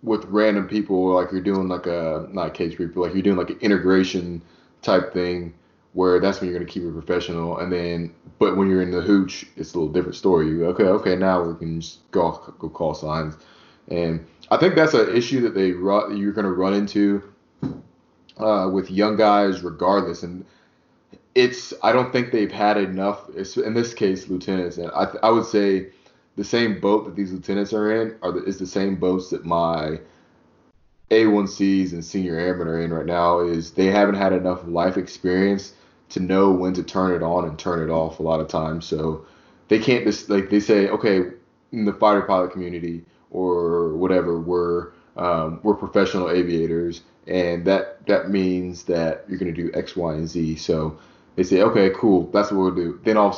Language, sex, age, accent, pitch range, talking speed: English, male, 20-39, American, 85-100 Hz, 205 wpm